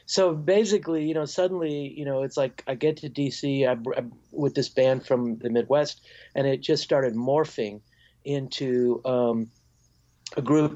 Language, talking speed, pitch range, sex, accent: English, 155 wpm, 120-140 Hz, male, American